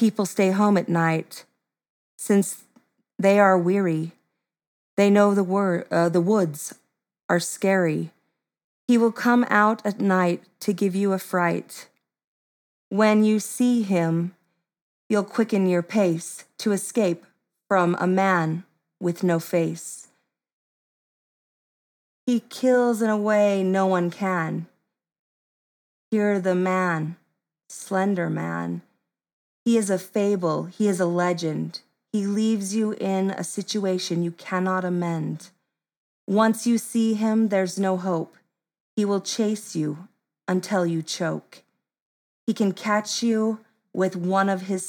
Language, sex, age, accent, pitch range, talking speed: English, female, 40-59, American, 175-210 Hz, 130 wpm